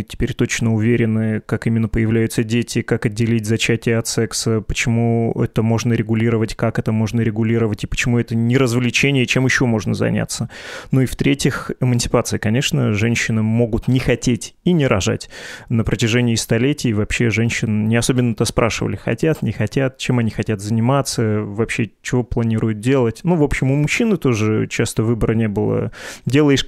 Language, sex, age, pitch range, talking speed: Russian, male, 20-39, 110-130 Hz, 160 wpm